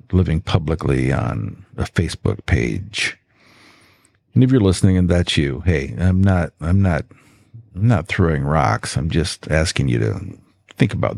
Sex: male